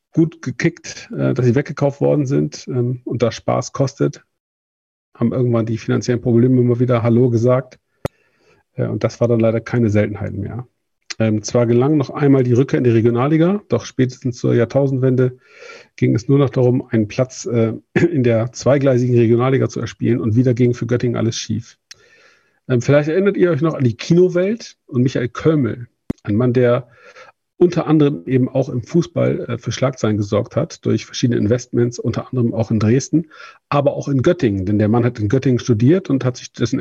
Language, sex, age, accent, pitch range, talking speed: German, male, 50-69, German, 115-140 Hz, 175 wpm